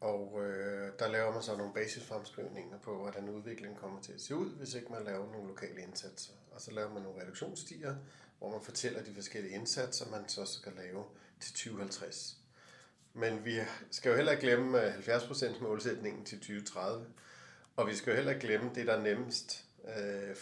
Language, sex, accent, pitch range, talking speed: Danish, male, native, 100-125 Hz, 185 wpm